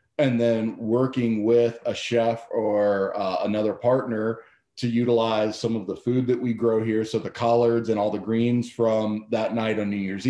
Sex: male